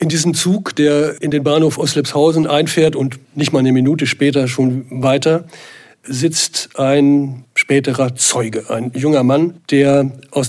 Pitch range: 130-150 Hz